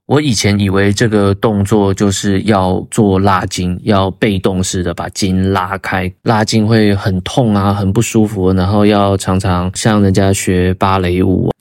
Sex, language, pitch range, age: male, Chinese, 95-110 Hz, 20-39